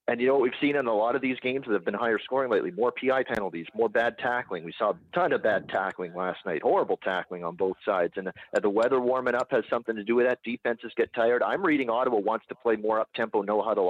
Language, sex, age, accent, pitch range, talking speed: English, male, 40-59, American, 105-130 Hz, 270 wpm